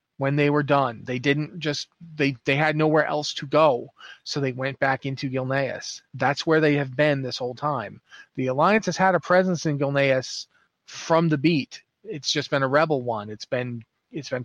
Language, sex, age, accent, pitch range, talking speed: English, male, 30-49, American, 140-175 Hz, 200 wpm